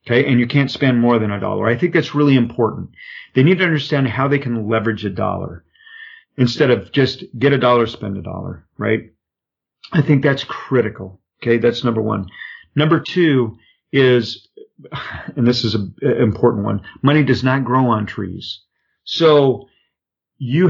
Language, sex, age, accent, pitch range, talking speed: English, male, 50-69, American, 115-150 Hz, 170 wpm